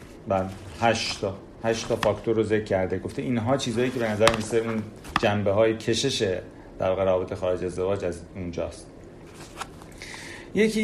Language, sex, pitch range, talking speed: Persian, male, 95-125 Hz, 150 wpm